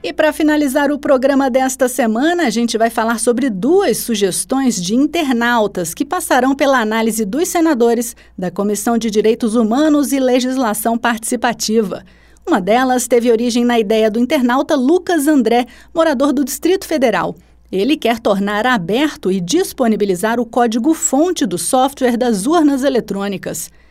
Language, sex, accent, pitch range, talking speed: Portuguese, female, Brazilian, 220-290 Hz, 145 wpm